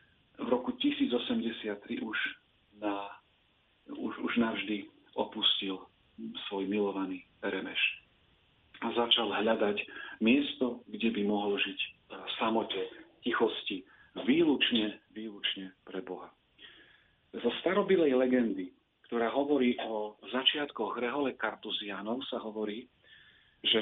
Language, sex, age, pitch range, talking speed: Slovak, male, 40-59, 105-130 Hz, 100 wpm